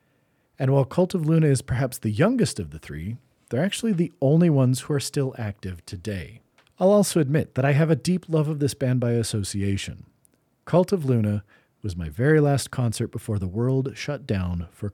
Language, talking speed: English, 200 wpm